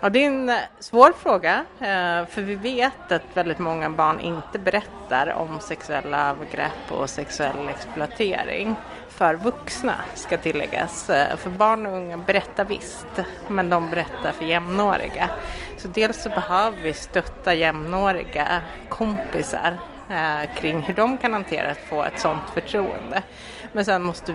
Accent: native